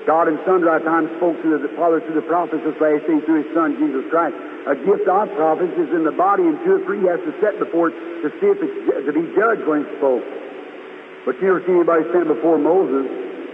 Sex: male